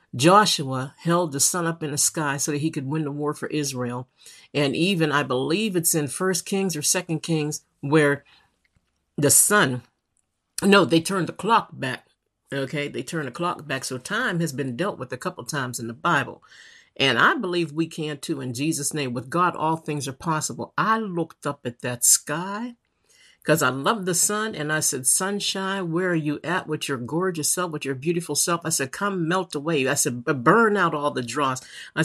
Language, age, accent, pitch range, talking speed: English, 50-69, American, 140-175 Hz, 210 wpm